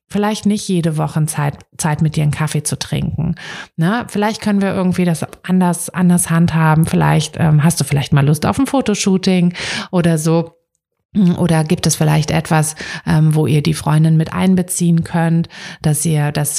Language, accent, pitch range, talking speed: German, German, 150-175 Hz, 175 wpm